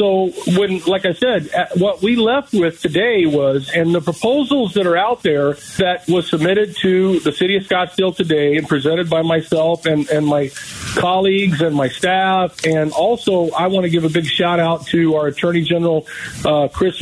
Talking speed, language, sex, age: 185 wpm, English, male, 50-69